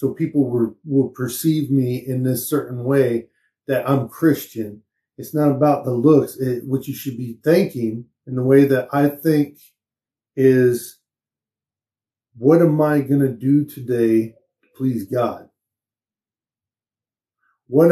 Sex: male